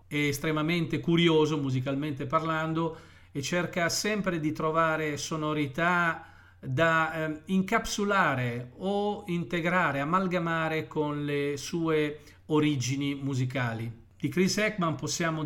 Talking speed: 100 wpm